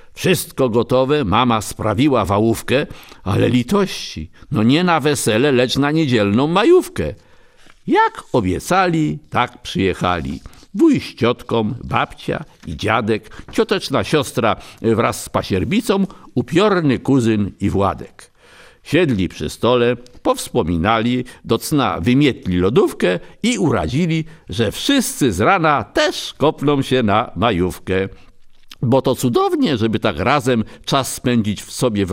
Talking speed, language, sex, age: 120 wpm, Polish, male, 50-69